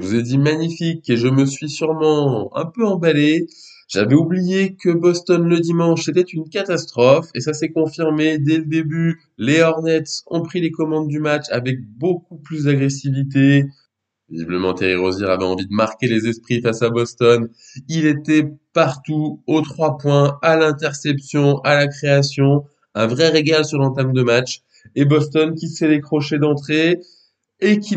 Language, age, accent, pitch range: French, 20-39, French, 140-165 Hz